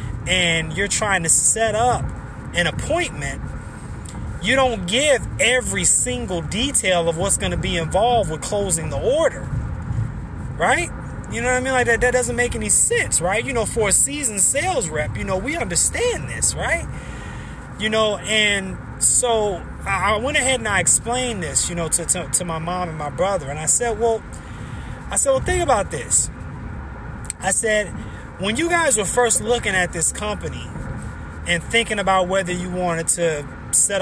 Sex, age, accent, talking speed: male, 20-39, American, 180 wpm